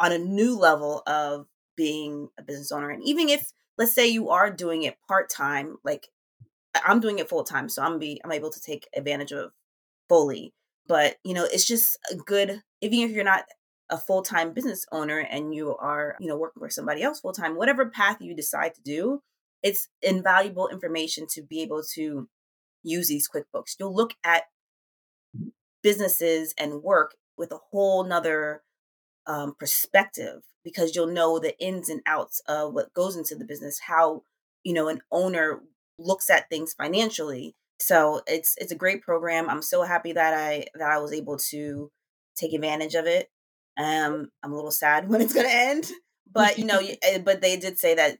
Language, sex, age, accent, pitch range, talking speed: English, female, 30-49, American, 150-195 Hz, 190 wpm